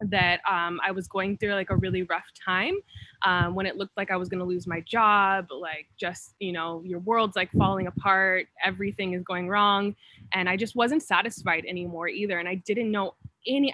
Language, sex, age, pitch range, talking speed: English, female, 20-39, 180-215 Hz, 210 wpm